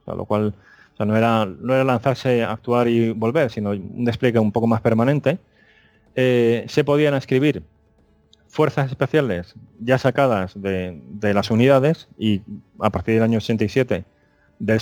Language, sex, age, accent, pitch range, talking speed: Spanish, male, 30-49, Spanish, 100-125 Hz, 155 wpm